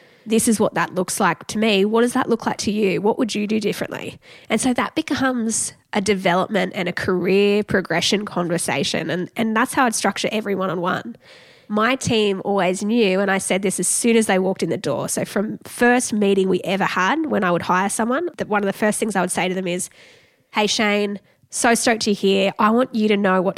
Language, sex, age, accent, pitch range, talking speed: English, female, 10-29, Australian, 195-230 Hz, 230 wpm